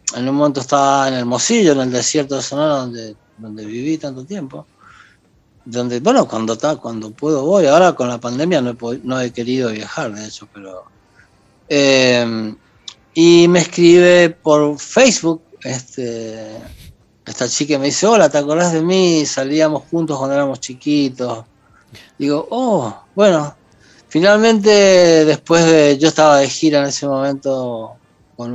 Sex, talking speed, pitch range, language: male, 155 wpm, 120-150 Hz, Spanish